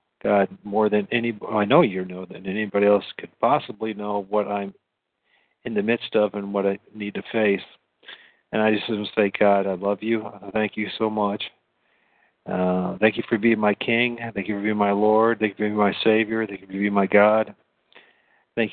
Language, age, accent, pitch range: English, 50-69, American, 100-115 Hz